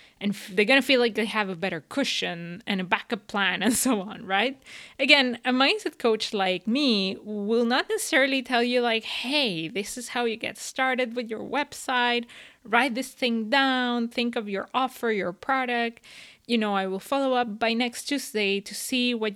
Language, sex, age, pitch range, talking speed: English, female, 20-39, 190-245 Hz, 195 wpm